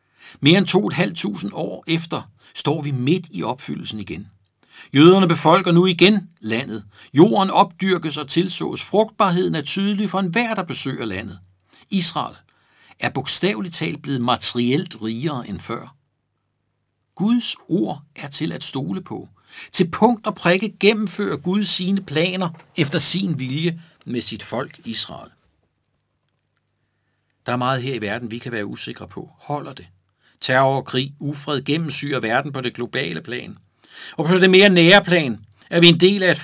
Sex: male